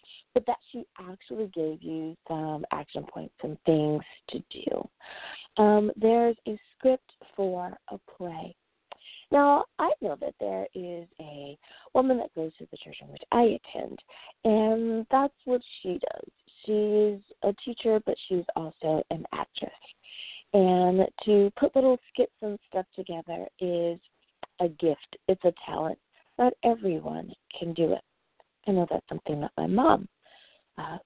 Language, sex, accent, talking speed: English, female, American, 150 wpm